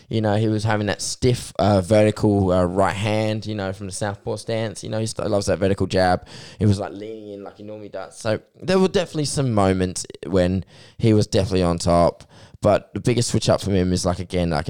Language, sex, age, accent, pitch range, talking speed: English, male, 10-29, Australian, 90-110 Hz, 235 wpm